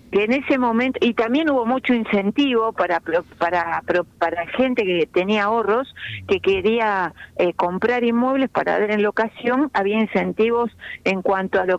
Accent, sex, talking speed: Argentinian, female, 165 wpm